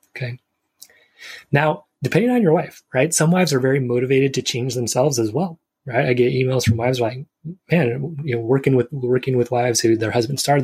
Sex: male